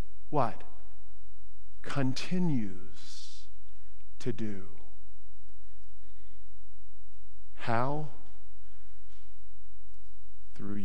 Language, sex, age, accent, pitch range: English, male, 50-69, American, 100-155 Hz